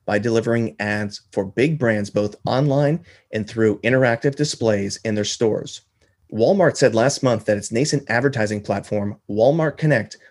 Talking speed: 150 wpm